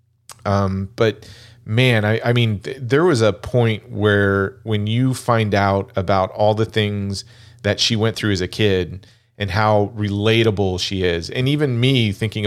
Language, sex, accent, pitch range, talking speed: English, male, American, 100-115 Hz, 170 wpm